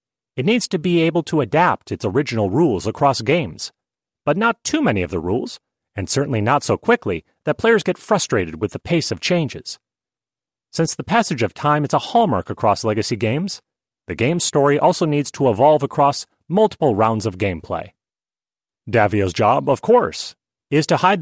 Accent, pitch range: American, 115-170 Hz